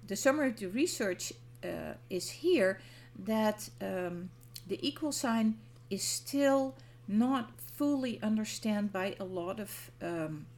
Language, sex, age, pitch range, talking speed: English, female, 50-69, 165-230 Hz, 130 wpm